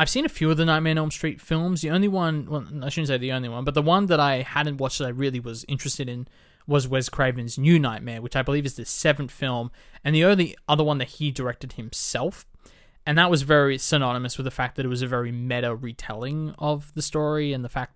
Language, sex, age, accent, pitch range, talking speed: English, male, 20-39, Australian, 125-155 Hz, 255 wpm